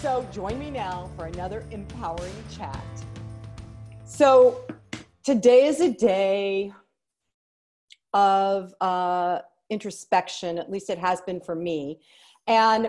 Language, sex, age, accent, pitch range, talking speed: English, female, 40-59, American, 175-225 Hz, 110 wpm